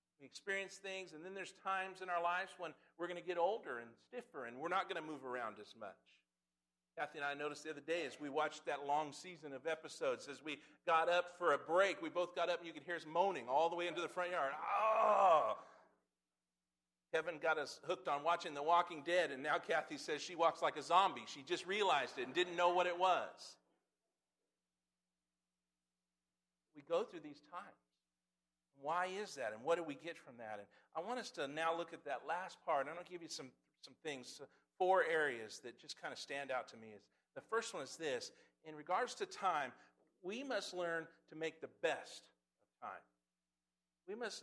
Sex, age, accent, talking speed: male, 50-69, American, 215 wpm